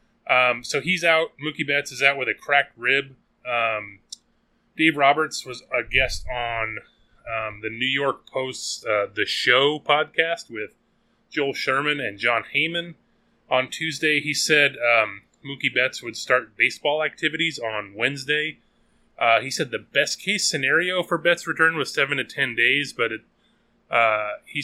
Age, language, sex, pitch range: 20-39, English, male, 120-150 Hz